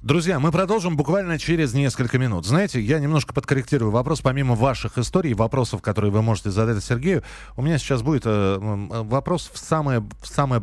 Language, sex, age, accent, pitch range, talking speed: Russian, male, 30-49, native, 105-140 Hz, 170 wpm